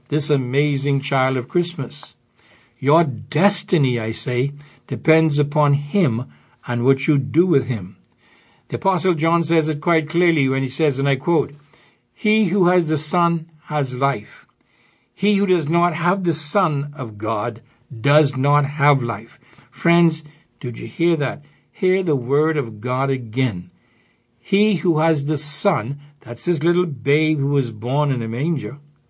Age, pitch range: 60-79, 125-165 Hz